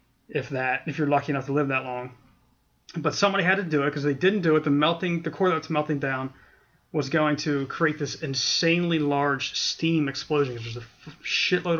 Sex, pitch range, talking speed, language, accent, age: male, 135-160 Hz, 205 wpm, English, American, 30-49